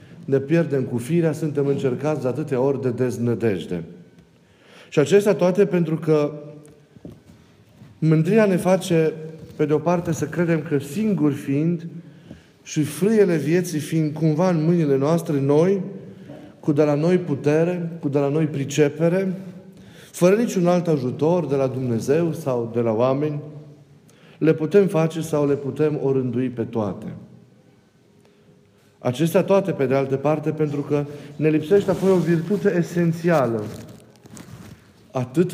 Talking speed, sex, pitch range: 140 wpm, male, 140-170 Hz